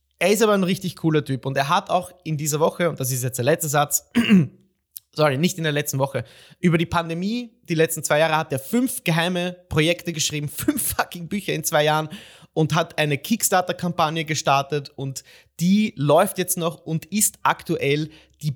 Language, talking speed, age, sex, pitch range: German, 195 wpm, 30-49, male, 140-175 Hz